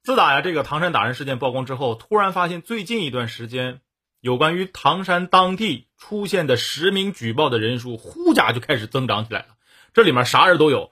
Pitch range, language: 125-205 Hz, Chinese